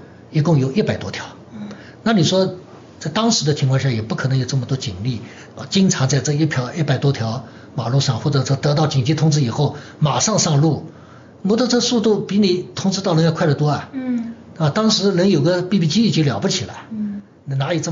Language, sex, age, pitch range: Chinese, male, 60-79, 115-155 Hz